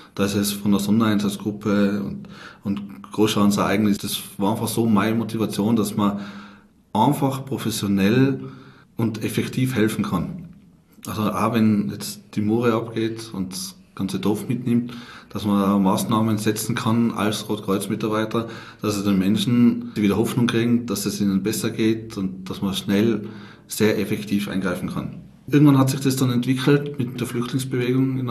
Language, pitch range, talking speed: German, 105-125 Hz, 155 wpm